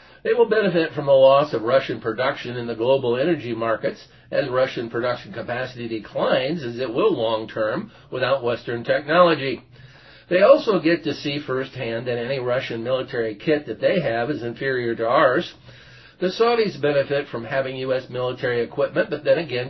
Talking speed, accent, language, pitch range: 170 wpm, American, English, 120-165 Hz